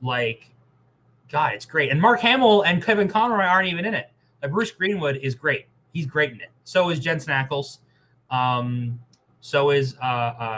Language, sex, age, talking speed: English, male, 20-39, 180 wpm